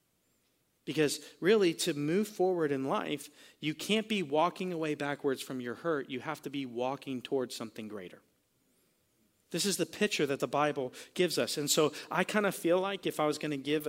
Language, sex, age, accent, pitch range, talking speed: English, male, 40-59, American, 145-185 Hz, 200 wpm